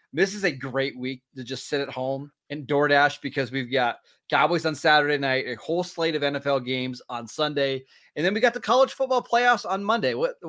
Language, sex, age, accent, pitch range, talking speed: English, male, 30-49, American, 135-180 Hz, 215 wpm